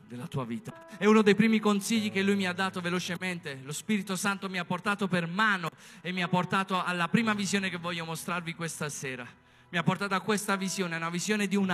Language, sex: Italian, male